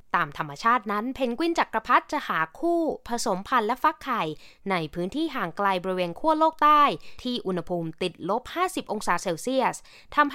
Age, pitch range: 20-39, 180-260 Hz